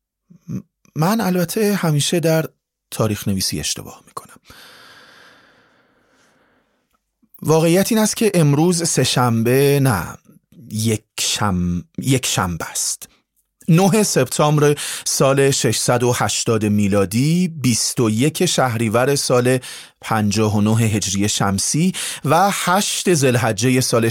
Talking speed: 85 wpm